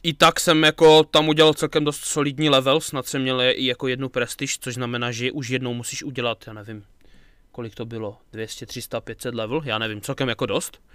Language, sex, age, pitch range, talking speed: Czech, male, 20-39, 130-155 Hz, 210 wpm